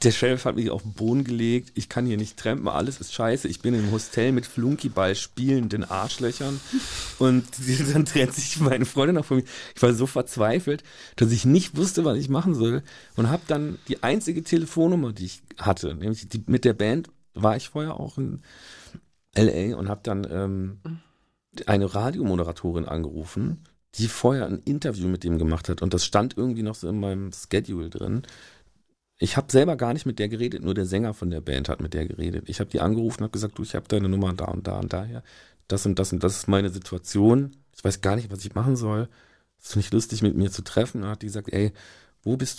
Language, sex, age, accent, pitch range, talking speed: German, male, 40-59, German, 95-125 Hz, 225 wpm